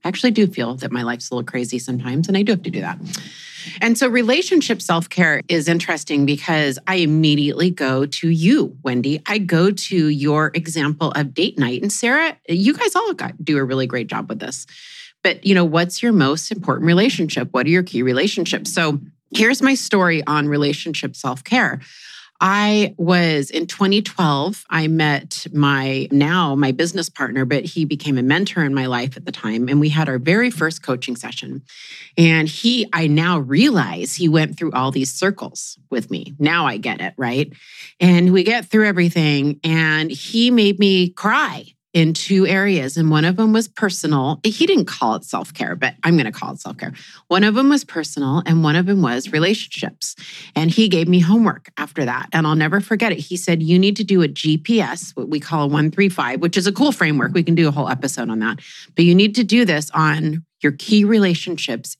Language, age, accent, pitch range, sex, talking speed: English, 30-49, American, 145-195 Hz, female, 200 wpm